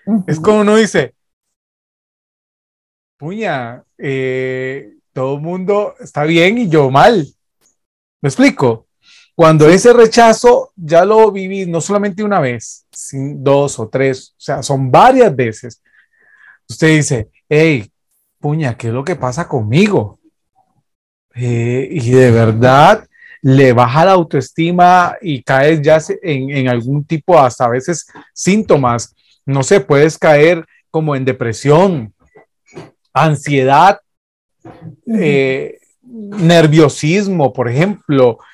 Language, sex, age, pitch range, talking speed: Spanish, male, 30-49, 135-205 Hz, 115 wpm